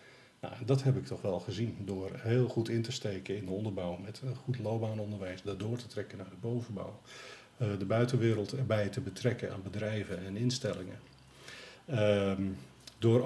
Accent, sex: Dutch, male